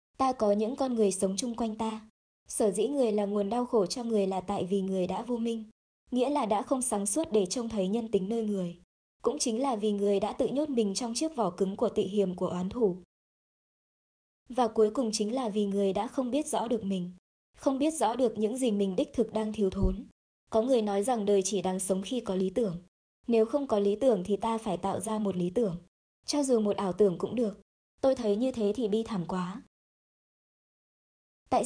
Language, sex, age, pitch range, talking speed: Vietnamese, male, 20-39, 200-240 Hz, 235 wpm